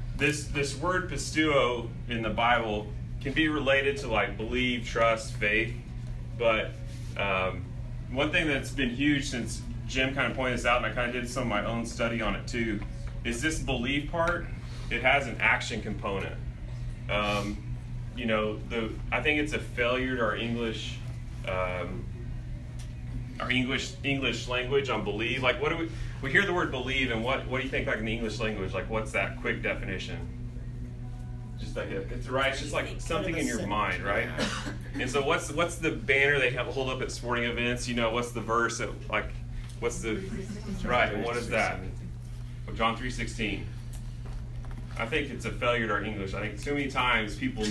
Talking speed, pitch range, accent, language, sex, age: 190 wpm, 115-125 Hz, American, English, male, 30-49